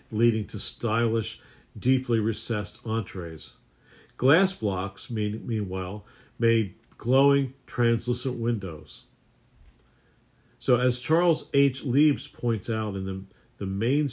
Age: 50-69